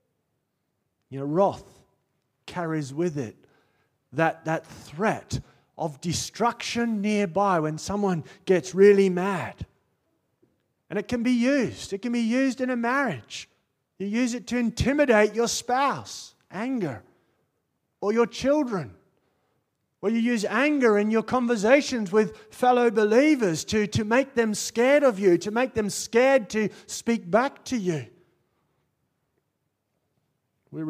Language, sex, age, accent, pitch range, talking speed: English, male, 30-49, Australian, 155-240 Hz, 130 wpm